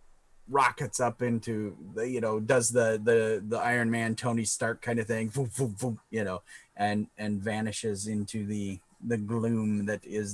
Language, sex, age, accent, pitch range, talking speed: English, male, 30-49, American, 110-140 Hz, 165 wpm